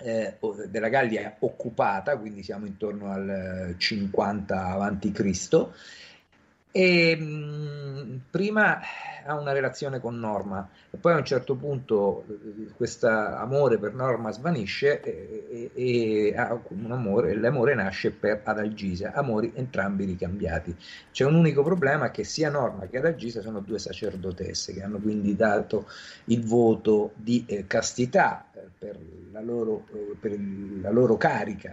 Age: 50-69